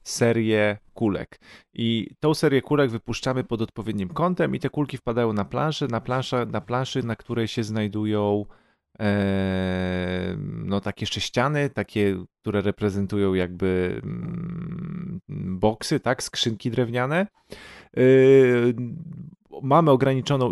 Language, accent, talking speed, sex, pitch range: Polish, native, 115 wpm, male, 100-120 Hz